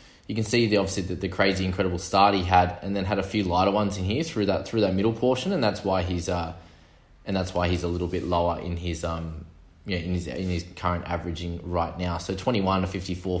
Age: 20-39